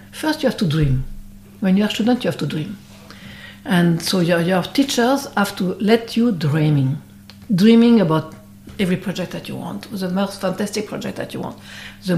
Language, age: German, 60-79